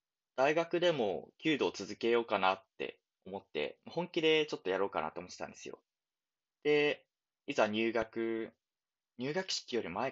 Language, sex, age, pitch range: Japanese, male, 20-39, 110-165 Hz